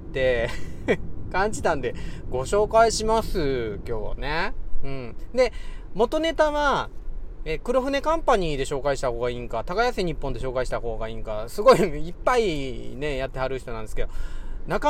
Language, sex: Japanese, male